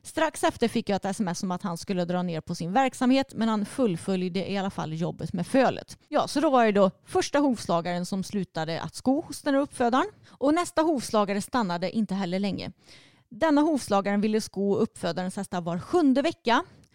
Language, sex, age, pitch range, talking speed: Swedish, female, 30-49, 185-250 Hz, 195 wpm